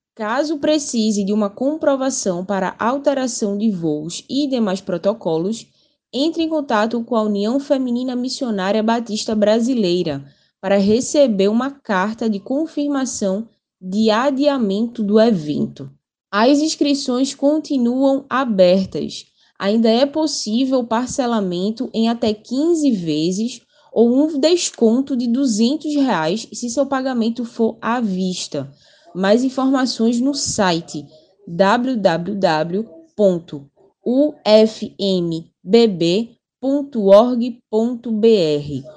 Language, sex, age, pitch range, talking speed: Portuguese, female, 10-29, 195-265 Hz, 95 wpm